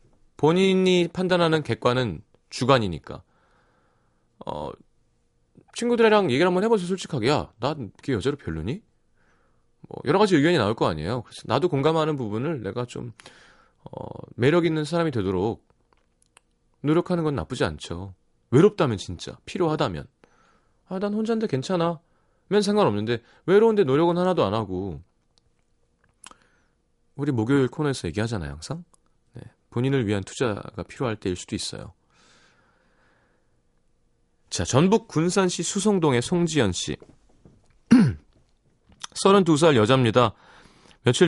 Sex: male